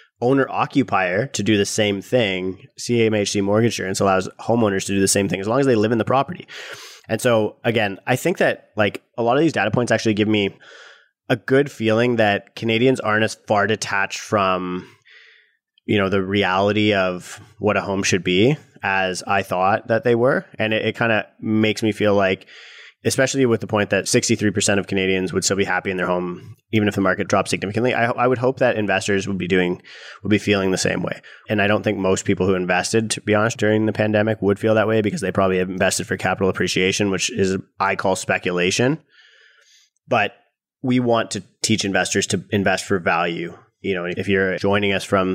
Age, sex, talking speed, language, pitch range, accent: 20-39, male, 215 wpm, English, 95-115 Hz, American